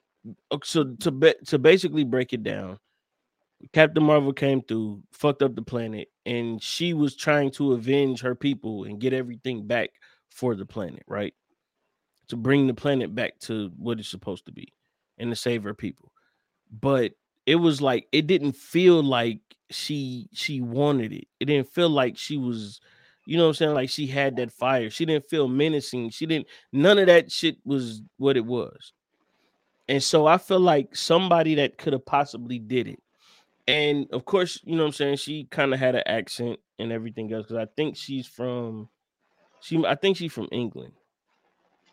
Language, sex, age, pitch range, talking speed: English, male, 20-39, 115-150 Hz, 185 wpm